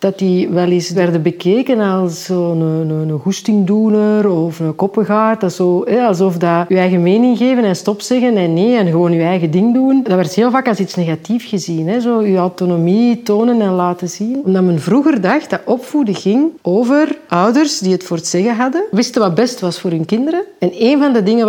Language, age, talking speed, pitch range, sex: Dutch, 40-59, 215 wpm, 180-235 Hz, female